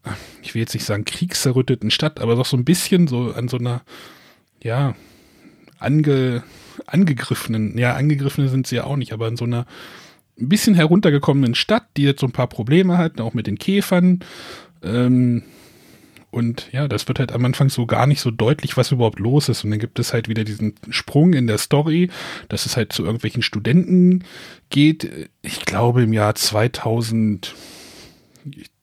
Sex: male